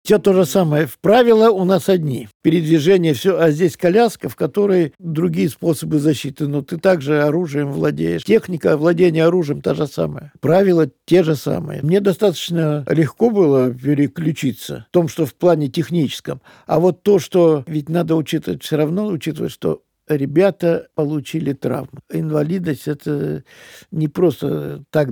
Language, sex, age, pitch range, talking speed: Russian, male, 60-79, 150-190 Hz, 150 wpm